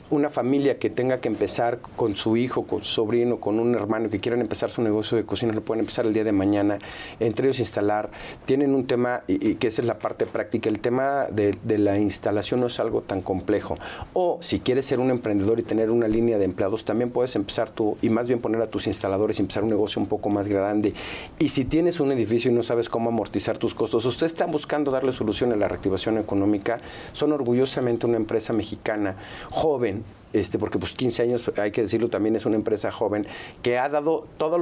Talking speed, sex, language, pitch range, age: 225 wpm, male, Spanish, 105-125 Hz, 50-69